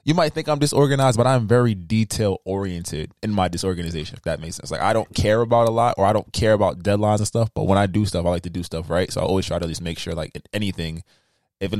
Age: 20-39